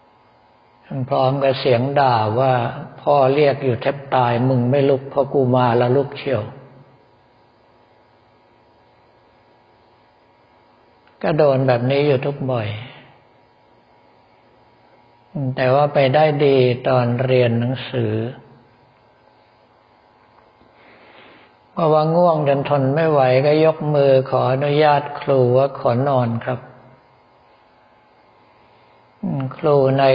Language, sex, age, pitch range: Thai, male, 60-79, 105-135 Hz